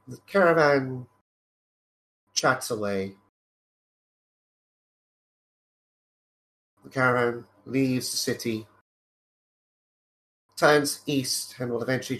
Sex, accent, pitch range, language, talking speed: male, British, 100-125 Hz, English, 70 wpm